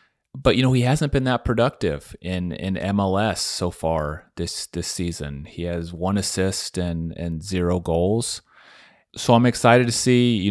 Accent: American